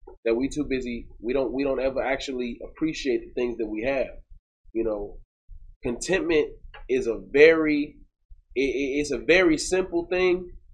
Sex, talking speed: male, 150 wpm